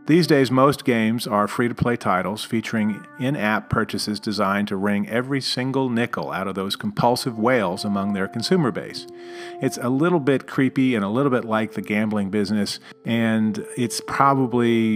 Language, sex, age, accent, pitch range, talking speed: English, male, 40-59, American, 105-135 Hz, 165 wpm